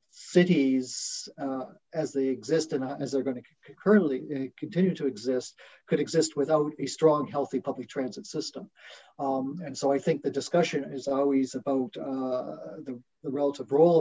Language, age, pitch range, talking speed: English, 40-59, 130-150 Hz, 165 wpm